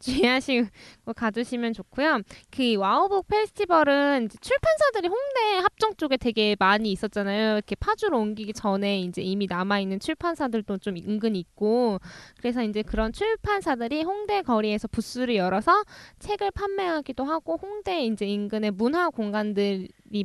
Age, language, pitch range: 10-29, Korean, 215-325 Hz